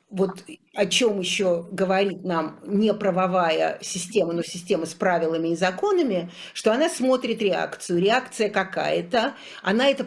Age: 50-69